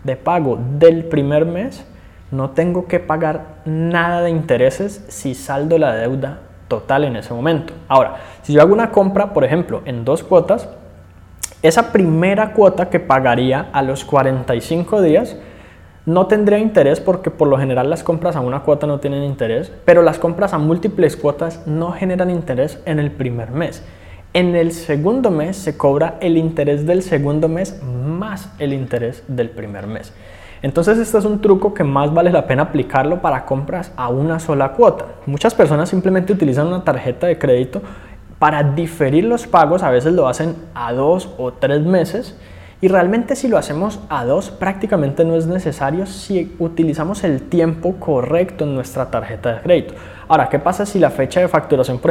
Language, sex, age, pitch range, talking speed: Spanish, male, 20-39, 130-175 Hz, 175 wpm